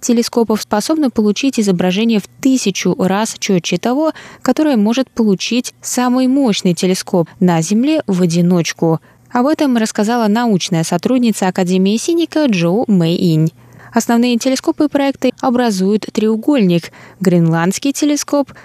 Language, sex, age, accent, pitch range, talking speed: Russian, female, 20-39, native, 180-250 Hz, 115 wpm